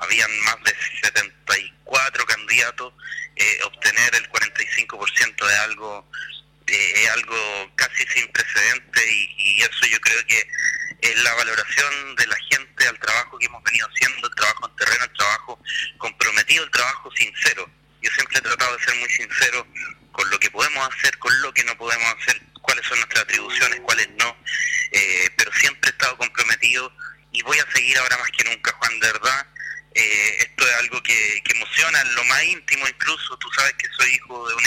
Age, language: 30-49, Spanish